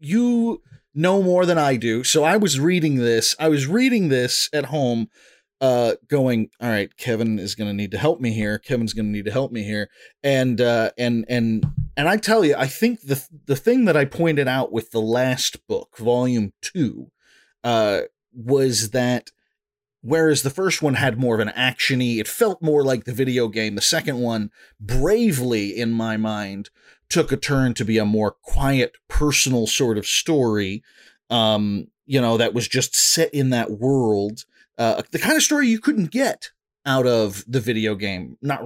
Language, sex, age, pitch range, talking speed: English, male, 30-49, 115-165 Hz, 190 wpm